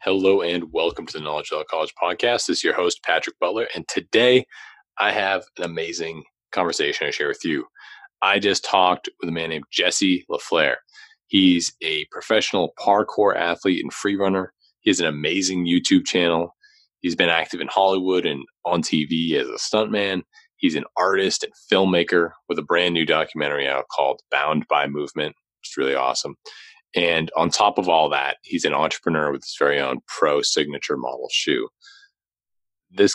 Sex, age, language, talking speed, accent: male, 30-49, English, 170 wpm, American